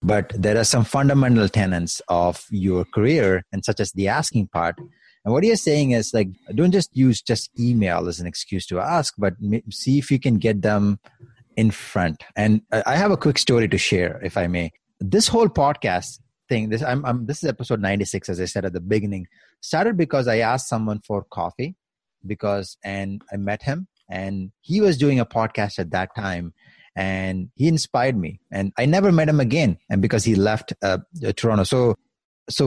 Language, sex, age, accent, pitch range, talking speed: English, male, 30-49, Indian, 95-125 Hz, 195 wpm